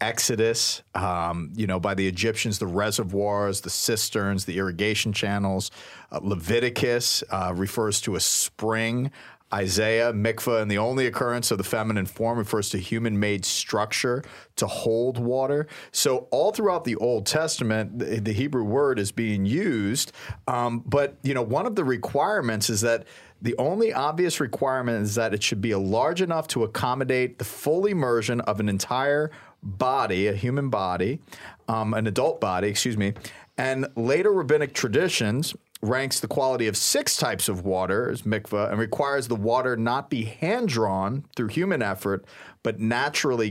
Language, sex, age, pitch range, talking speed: English, male, 40-59, 105-130 Hz, 160 wpm